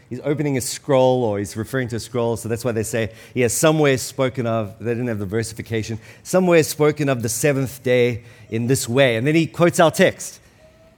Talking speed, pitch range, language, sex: 220 wpm, 125-170 Hz, English, male